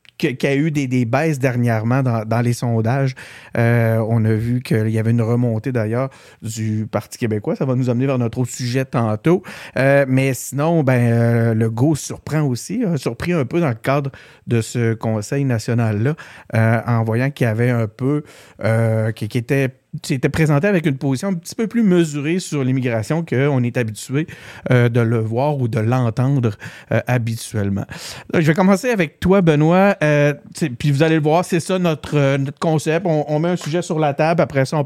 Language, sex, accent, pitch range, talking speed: French, male, Canadian, 115-155 Hz, 200 wpm